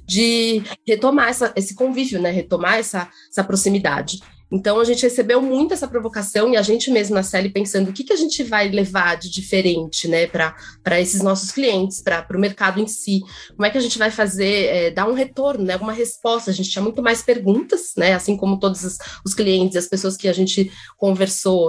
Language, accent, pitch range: Portuguese, Brazilian, 185-215 Hz